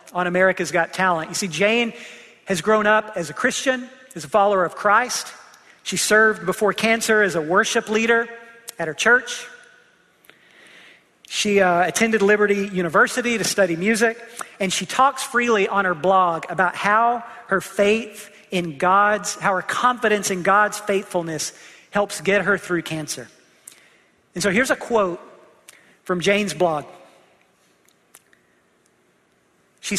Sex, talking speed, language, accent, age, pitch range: male, 140 wpm, English, American, 40-59, 175-215 Hz